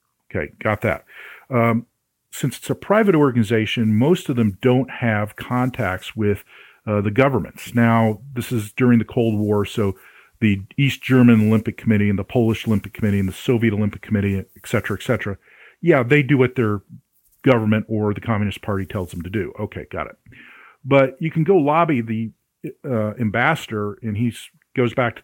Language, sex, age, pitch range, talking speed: English, male, 40-59, 105-125 Hz, 180 wpm